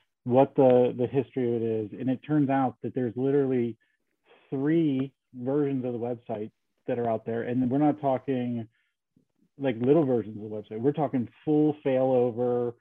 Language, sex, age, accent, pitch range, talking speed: English, male, 40-59, American, 120-140 Hz, 175 wpm